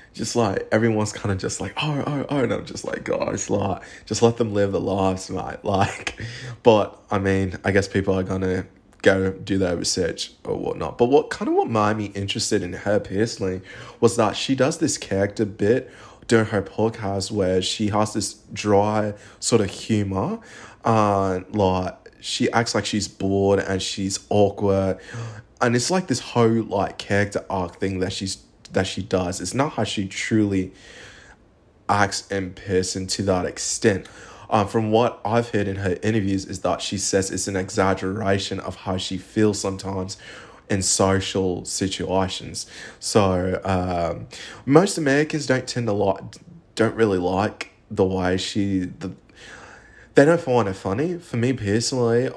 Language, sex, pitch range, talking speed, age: English, male, 95-110 Hz, 170 wpm, 20-39